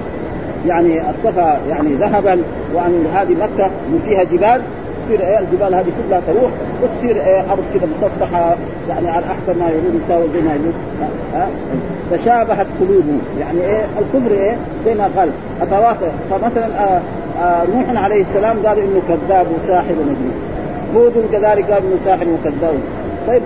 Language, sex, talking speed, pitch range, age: Arabic, male, 150 wpm, 175-240 Hz, 40-59